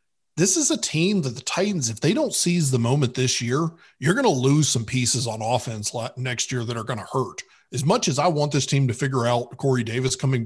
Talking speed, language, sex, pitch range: 245 wpm, English, male, 125-165 Hz